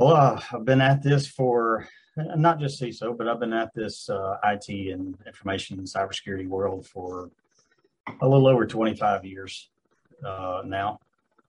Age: 40-59